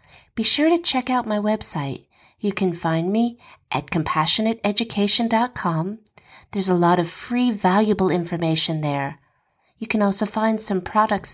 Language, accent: English, American